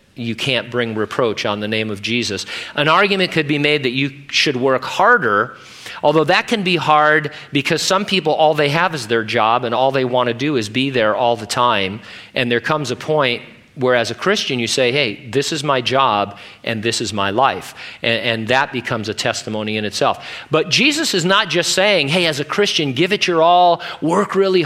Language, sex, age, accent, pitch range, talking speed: English, male, 40-59, American, 120-165 Hz, 215 wpm